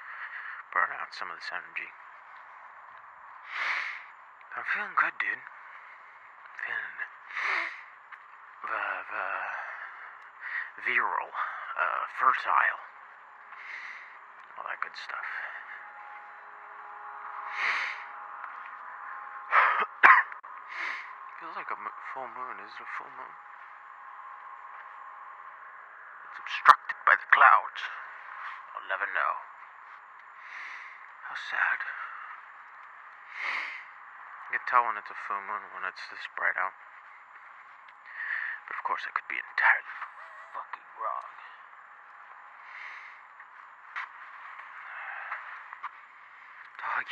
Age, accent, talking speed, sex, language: 30-49, American, 80 wpm, male, English